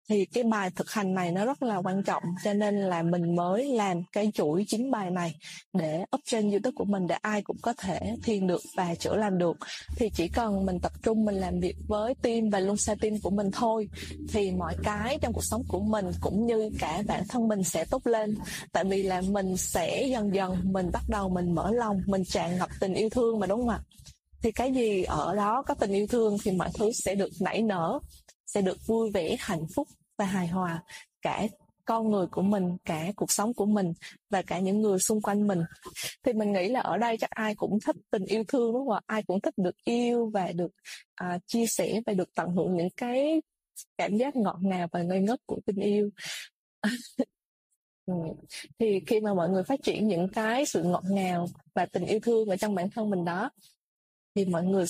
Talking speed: 225 wpm